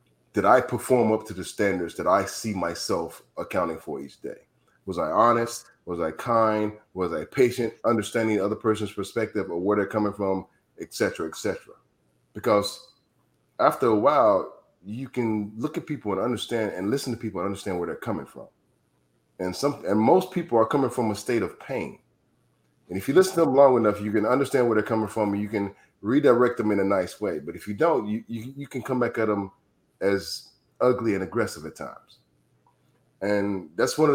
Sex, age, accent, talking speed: male, 30-49, American, 205 wpm